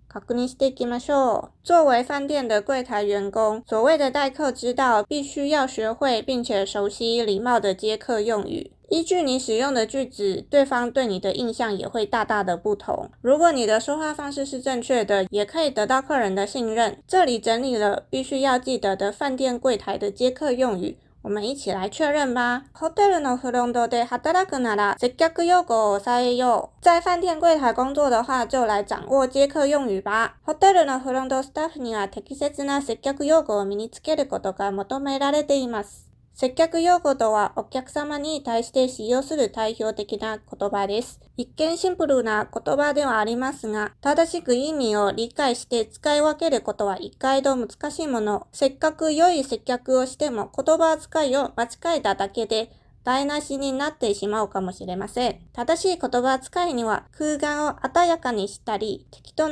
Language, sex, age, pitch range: Chinese, female, 30-49, 220-290 Hz